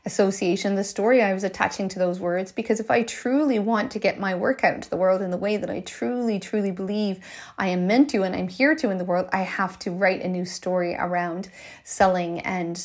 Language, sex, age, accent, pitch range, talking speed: English, female, 30-49, American, 185-255 Hz, 240 wpm